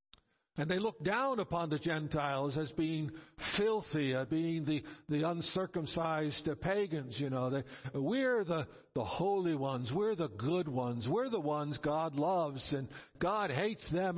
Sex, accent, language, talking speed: male, American, English, 150 wpm